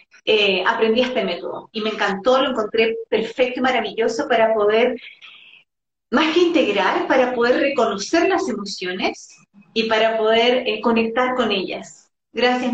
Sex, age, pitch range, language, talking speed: female, 30-49, 210-255 Hz, English, 140 wpm